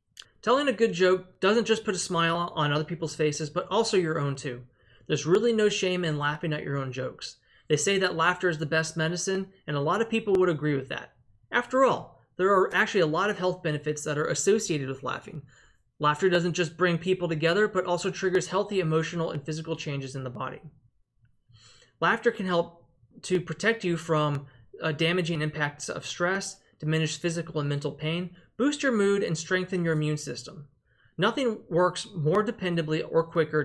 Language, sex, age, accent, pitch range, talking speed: English, male, 20-39, American, 150-185 Hz, 195 wpm